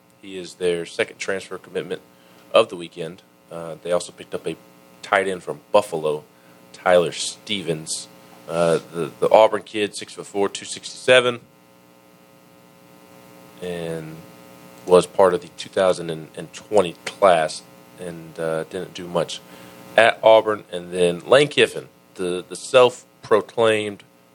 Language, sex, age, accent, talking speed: English, male, 40-59, American, 120 wpm